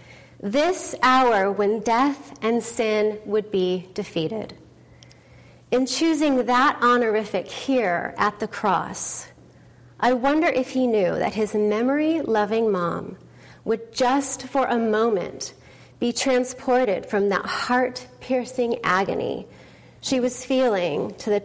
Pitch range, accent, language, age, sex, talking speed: 205-260 Hz, American, English, 30-49, female, 120 wpm